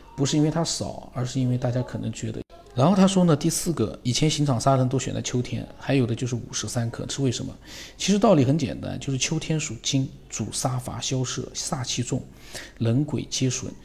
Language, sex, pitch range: Chinese, male, 120-145 Hz